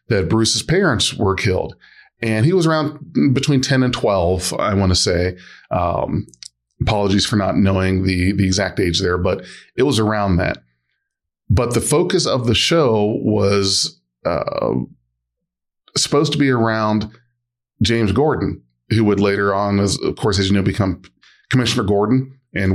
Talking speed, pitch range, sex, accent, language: 155 wpm, 100-130 Hz, male, American, English